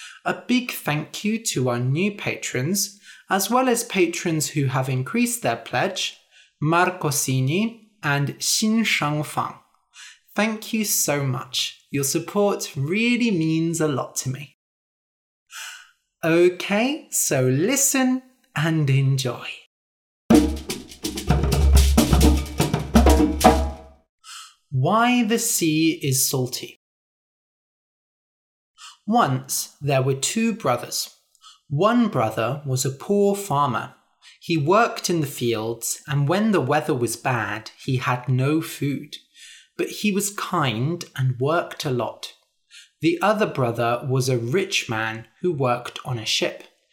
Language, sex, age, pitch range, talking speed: English, male, 30-49, 130-205 Hz, 115 wpm